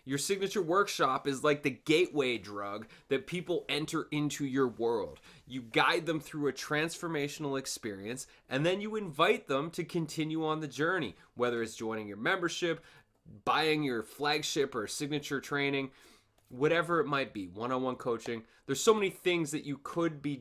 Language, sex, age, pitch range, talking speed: English, male, 20-39, 125-165 Hz, 165 wpm